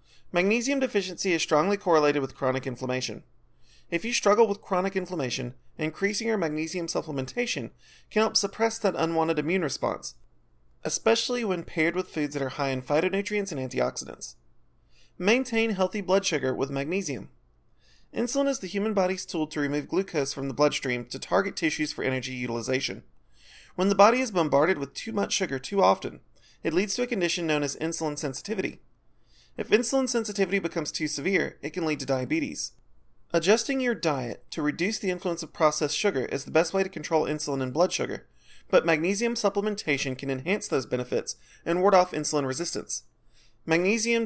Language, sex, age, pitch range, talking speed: English, male, 30-49, 140-200 Hz, 170 wpm